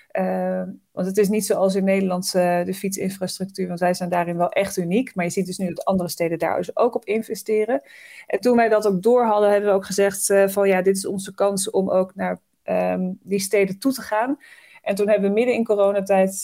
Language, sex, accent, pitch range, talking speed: Dutch, female, Dutch, 185-210 Hz, 235 wpm